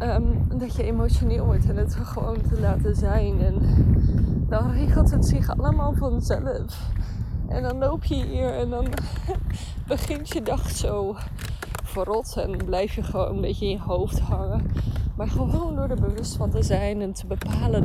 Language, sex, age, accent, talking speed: Dutch, female, 20-39, Dutch, 170 wpm